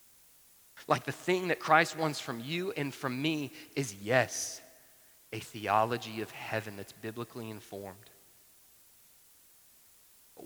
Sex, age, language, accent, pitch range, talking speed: male, 30-49, English, American, 120-145 Hz, 120 wpm